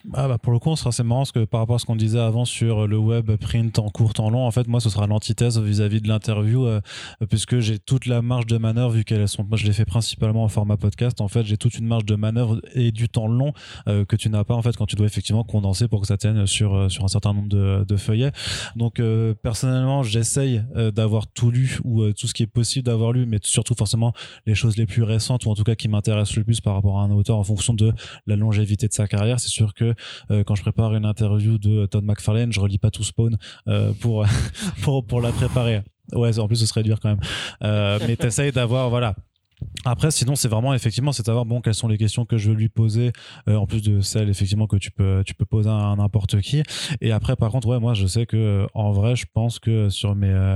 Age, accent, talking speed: 20-39, French, 250 wpm